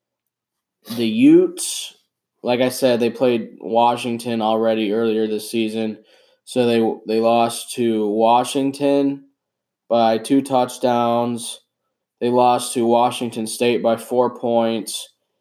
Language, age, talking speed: English, 20-39, 115 wpm